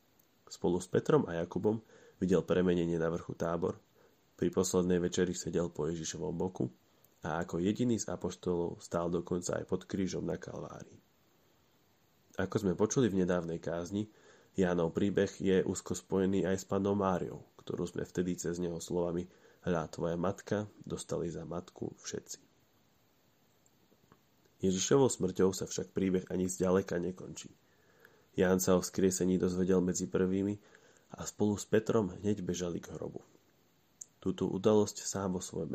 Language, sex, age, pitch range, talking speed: Slovak, male, 30-49, 90-100 Hz, 145 wpm